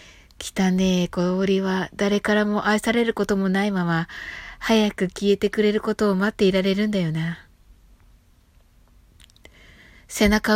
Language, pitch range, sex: Japanese, 165-215 Hz, female